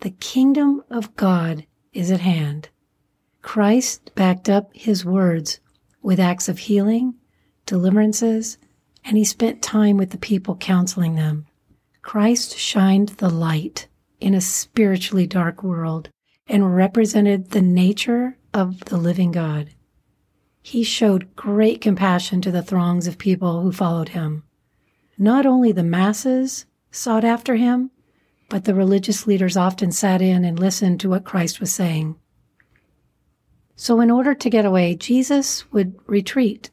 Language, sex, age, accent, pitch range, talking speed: English, female, 40-59, American, 180-225 Hz, 140 wpm